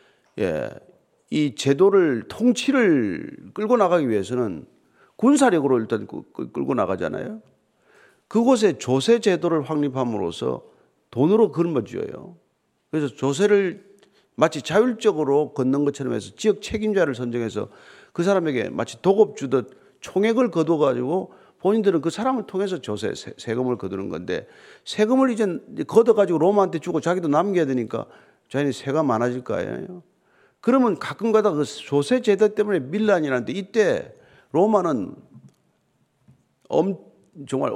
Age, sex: 40-59, male